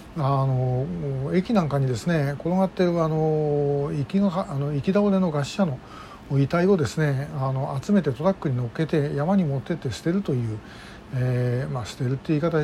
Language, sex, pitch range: Japanese, male, 135-175 Hz